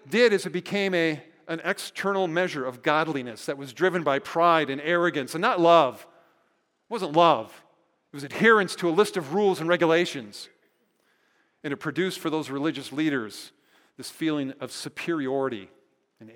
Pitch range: 160-215 Hz